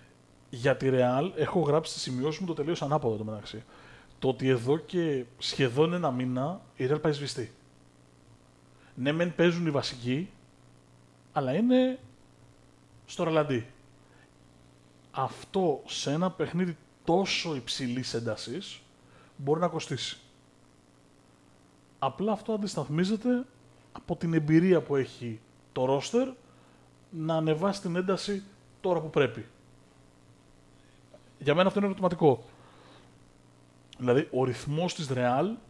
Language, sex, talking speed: Greek, male, 120 wpm